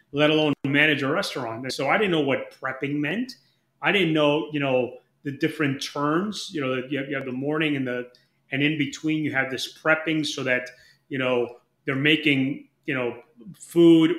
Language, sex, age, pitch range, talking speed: English, male, 30-49, 135-165 Hz, 195 wpm